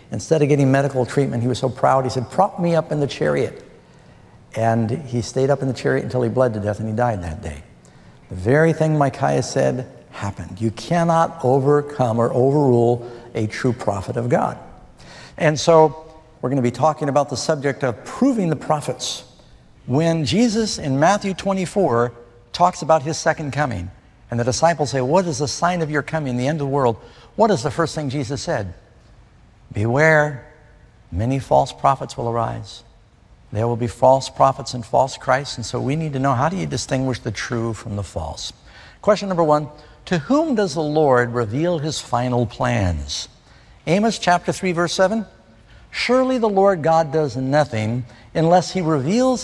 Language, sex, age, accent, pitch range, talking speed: English, male, 60-79, American, 120-160 Hz, 185 wpm